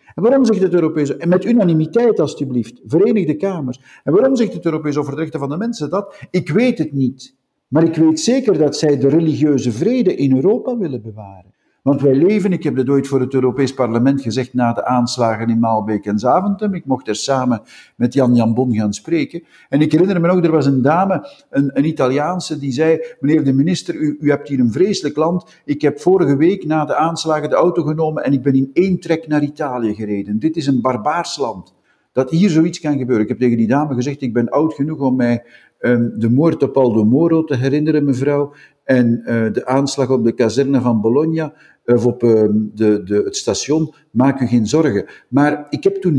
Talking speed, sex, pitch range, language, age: 215 wpm, male, 125-165 Hz, Dutch, 50-69